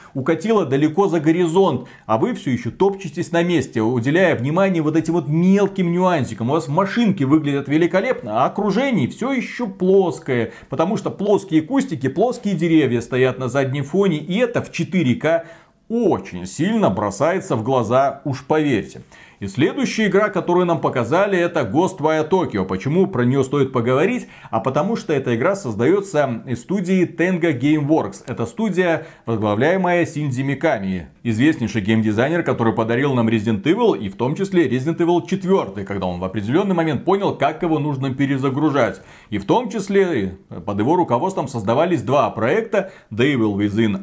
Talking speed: 155 wpm